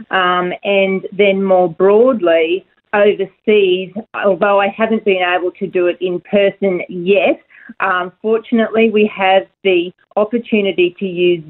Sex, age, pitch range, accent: female, 40-59, 175-205 Hz, Australian